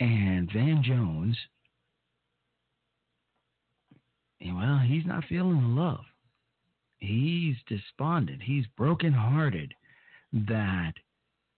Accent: American